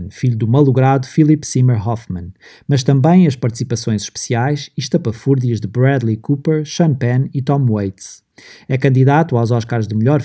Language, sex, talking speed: Portuguese, male, 160 wpm